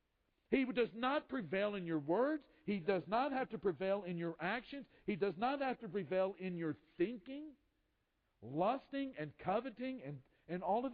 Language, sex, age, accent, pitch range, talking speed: English, male, 50-69, American, 160-220 Hz, 175 wpm